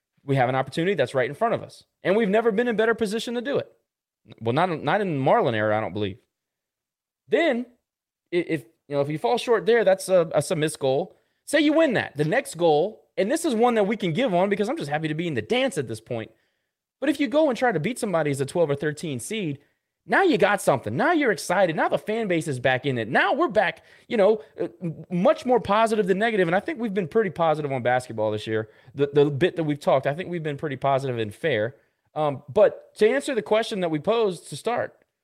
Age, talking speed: 20-39, 255 wpm